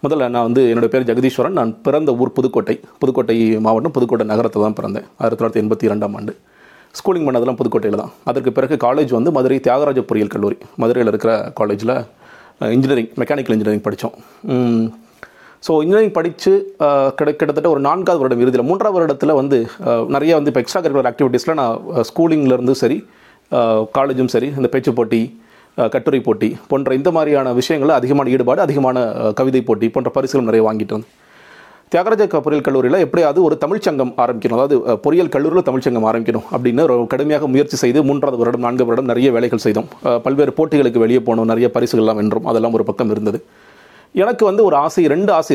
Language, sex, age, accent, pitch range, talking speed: Tamil, male, 30-49, native, 115-140 Hz, 160 wpm